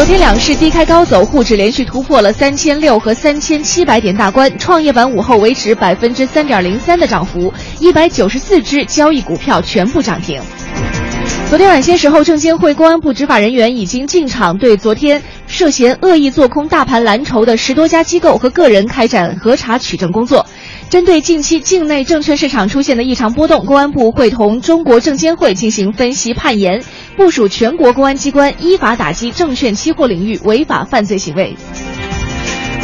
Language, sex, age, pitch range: Chinese, female, 20-39, 220-305 Hz